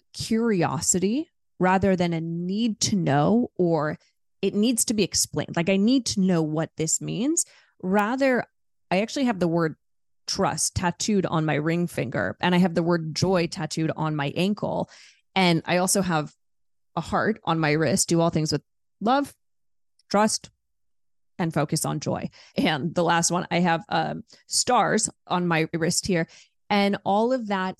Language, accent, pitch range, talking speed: English, American, 160-205 Hz, 170 wpm